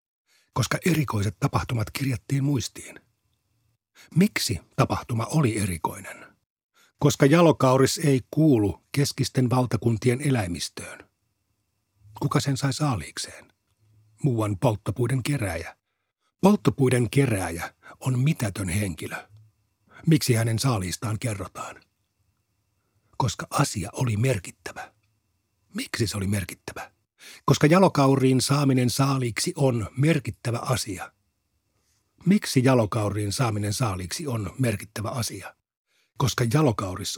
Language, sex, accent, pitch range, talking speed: Finnish, male, native, 100-140 Hz, 90 wpm